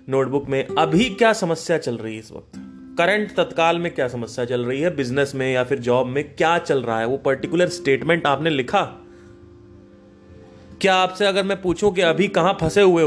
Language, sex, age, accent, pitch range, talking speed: Hindi, male, 30-49, native, 115-160 Hz, 195 wpm